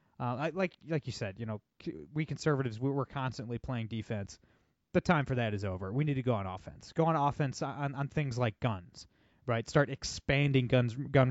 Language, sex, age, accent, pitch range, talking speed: English, male, 20-39, American, 120-155 Hz, 205 wpm